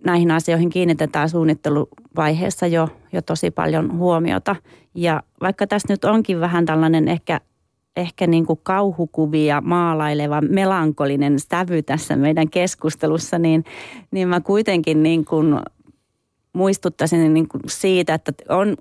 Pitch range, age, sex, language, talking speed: 155-175 Hz, 30-49, female, Finnish, 105 wpm